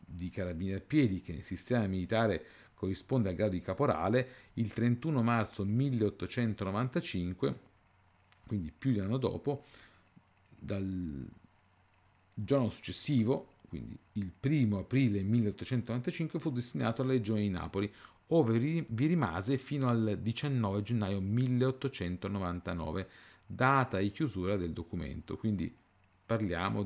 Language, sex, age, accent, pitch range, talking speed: Italian, male, 50-69, native, 95-125 Hz, 115 wpm